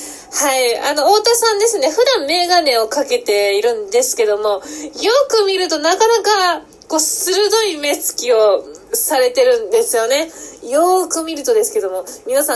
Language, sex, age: Japanese, female, 20-39